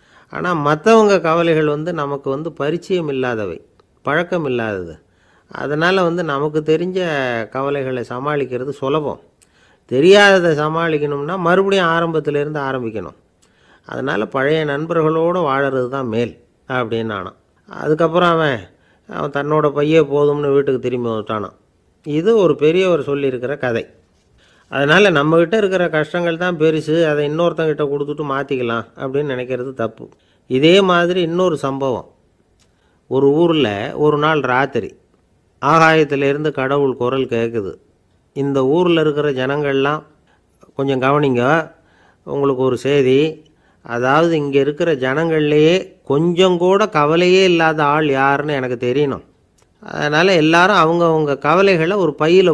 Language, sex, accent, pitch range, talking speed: Tamil, male, native, 130-165 Hz, 110 wpm